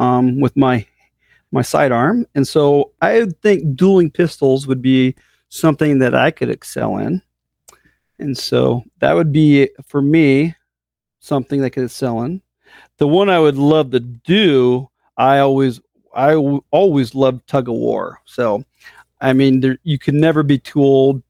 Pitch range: 130-155 Hz